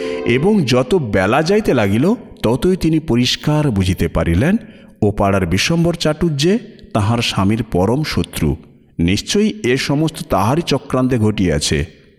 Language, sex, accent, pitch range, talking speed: Bengali, male, native, 90-150 Hz, 120 wpm